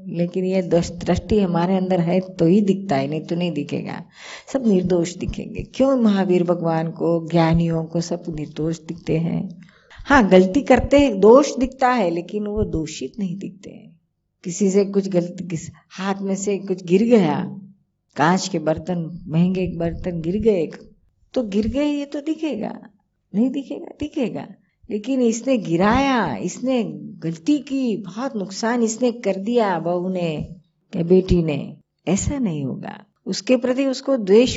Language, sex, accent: Gujarati, female, native